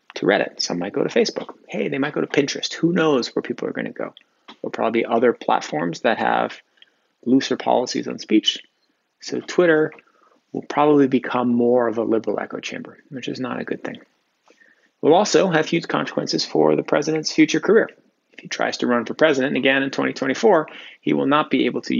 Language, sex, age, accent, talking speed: English, male, 30-49, American, 200 wpm